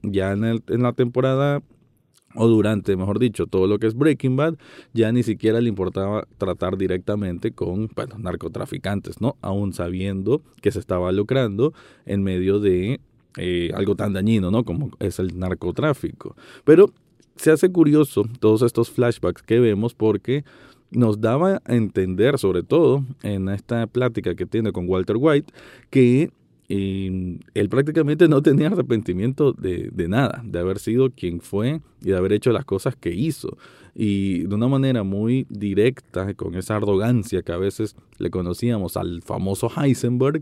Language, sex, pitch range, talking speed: Spanish, male, 100-125 Hz, 165 wpm